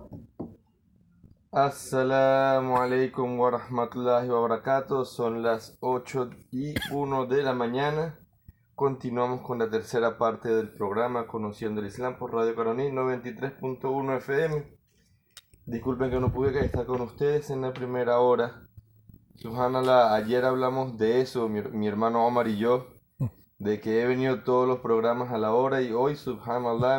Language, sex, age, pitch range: Spanish, male, 20-39, 110-130 Hz